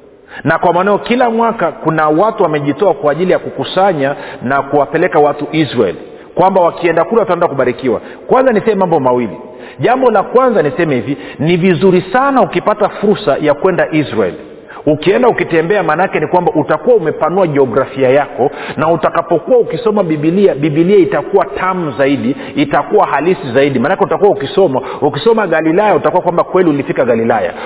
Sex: male